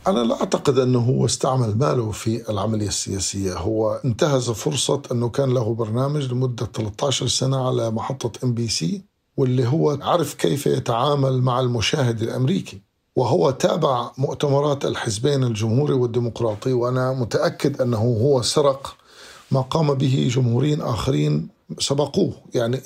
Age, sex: 50-69, male